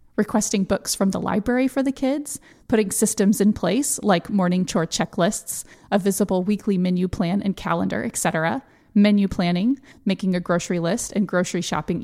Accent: American